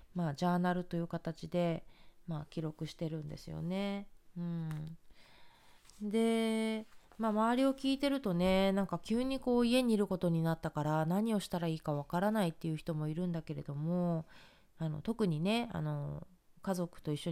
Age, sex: 20-39, female